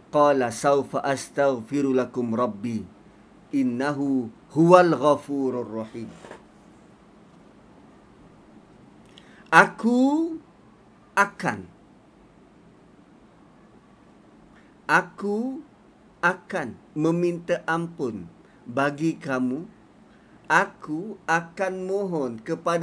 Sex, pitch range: male, 145-235 Hz